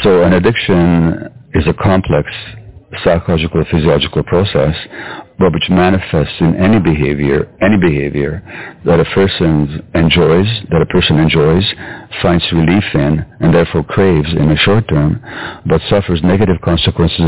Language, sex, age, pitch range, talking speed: English, male, 50-69, 75-90 Hz, 135 wpm